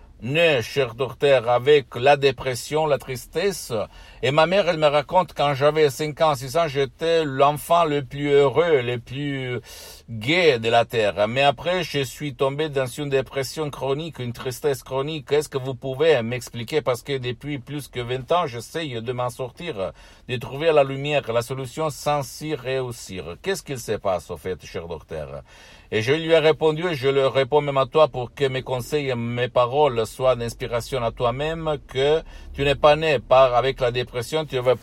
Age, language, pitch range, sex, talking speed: 60-79, Italian, 120-150 Hz, male, 190 wpm